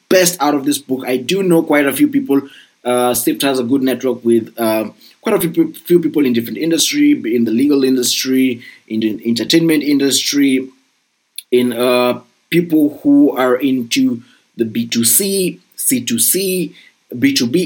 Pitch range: 125-170 Hz